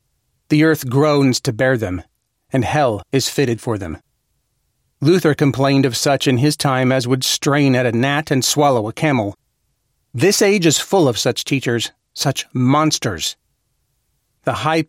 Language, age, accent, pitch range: English, 40-59, American, 125-160 Hz